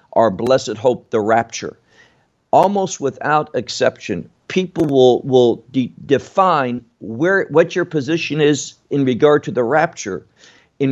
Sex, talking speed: male, 130 wpm